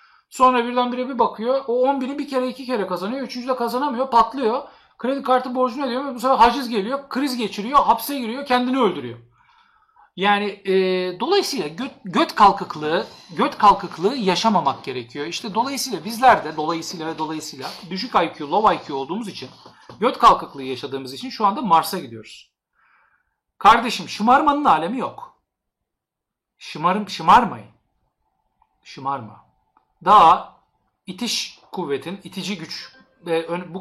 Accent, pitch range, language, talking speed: native, 155-245 Hz, Turkish, 135 wpm